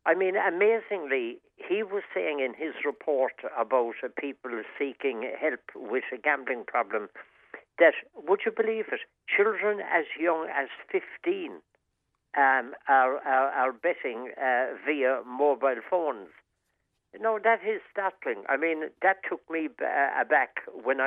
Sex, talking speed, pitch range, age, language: male, 135 wpm, 130-195 Hz, 60-79, English